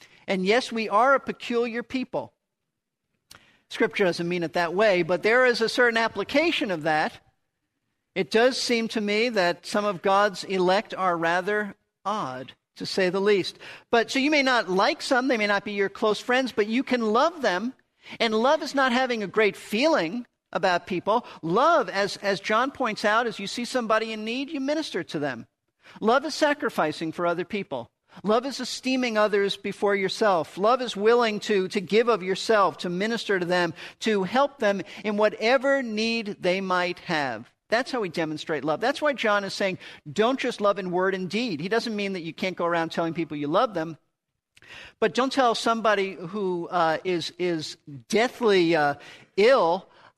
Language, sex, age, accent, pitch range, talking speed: English, male, 50-69, American, 180-240 Hz, 190 wpm